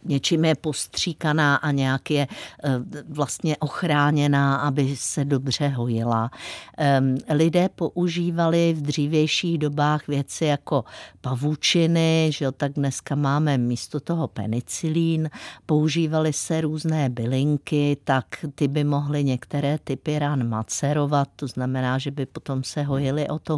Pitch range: 135-180 Hz